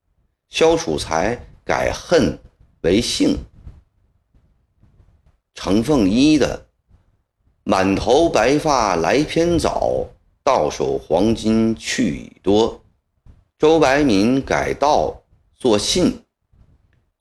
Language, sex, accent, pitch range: Chinese, male, native, 90-130 Hz